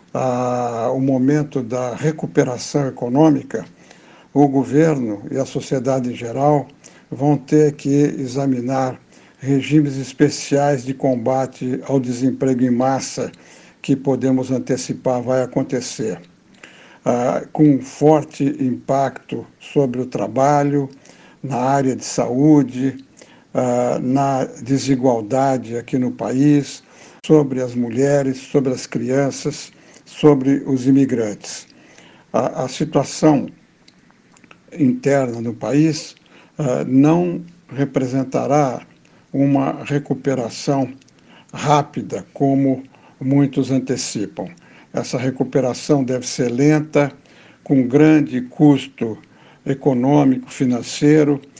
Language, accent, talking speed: Portuguese, Brazilian, 95 wpm